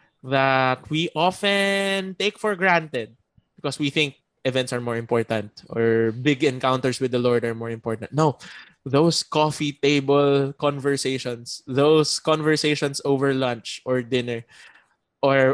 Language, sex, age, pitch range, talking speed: English, male, 20-39, 120-145 Hz, 130 wpm